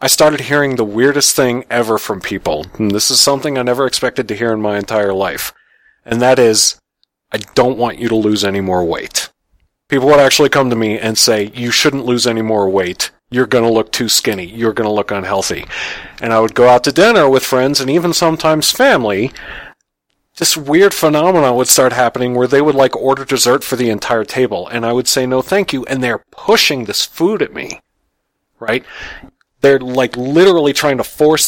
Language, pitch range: English, 110-140 Hz